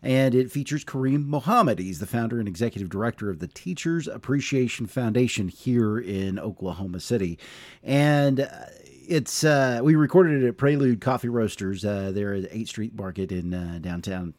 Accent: American